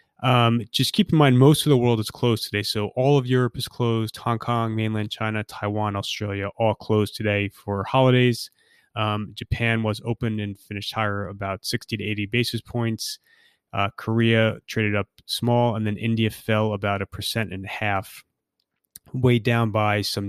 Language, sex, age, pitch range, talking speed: English, male, 20-39, 100-120 Hz, 180 wpm